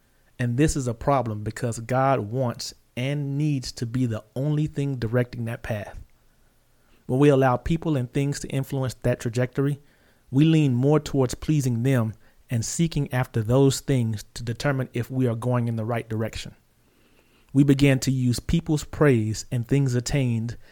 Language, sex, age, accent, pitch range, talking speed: English, male, 30-49, American, 120-140 Hz, 170 wpm